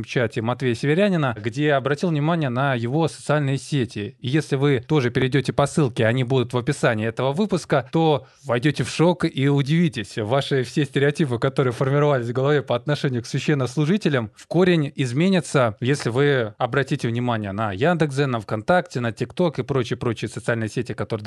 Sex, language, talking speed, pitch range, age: male, Russian, 165 wpm, 120-150 Hz, 20-39